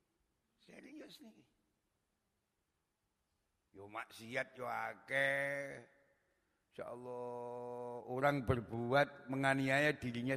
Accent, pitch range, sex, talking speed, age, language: native, 100-145 Hz, male, 70 wpm, 60-79, Indonesian